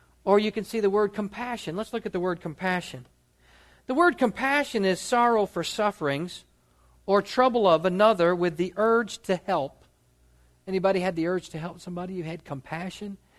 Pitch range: 175-260 Hz